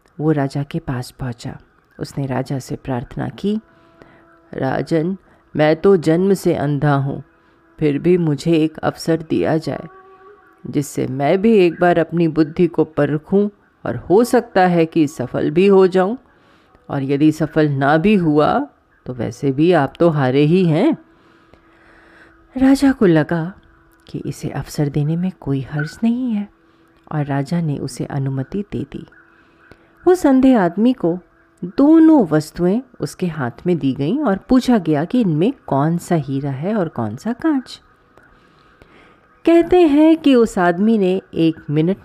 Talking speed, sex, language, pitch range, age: 155 wpm, female, Hindi, 145-195 Hz, 30-49